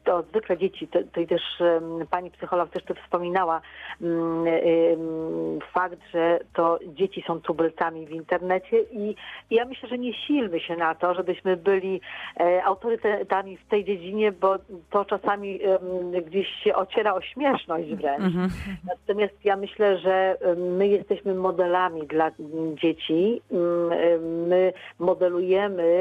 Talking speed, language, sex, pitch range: 145 wpm, Polish, female, 165-190 Hz